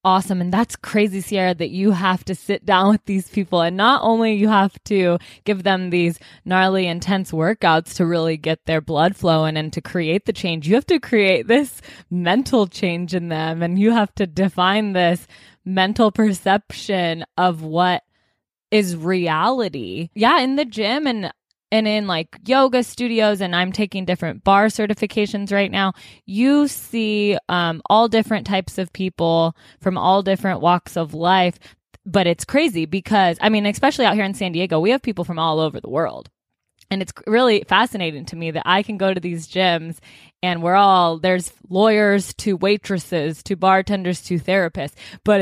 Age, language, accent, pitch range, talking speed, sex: 20-39, English, American, 175-210 Hz, 180 wpm, female